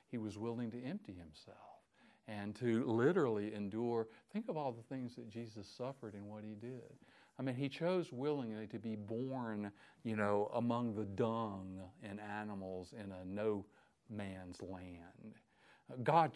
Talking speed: 160 wpm